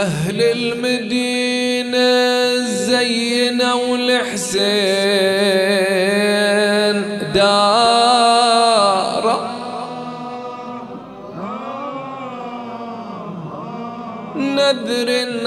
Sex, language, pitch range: male, English, 160-245 Hz